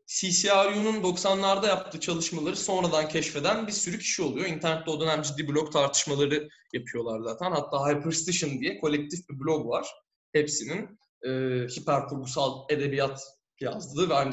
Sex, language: male, Turkish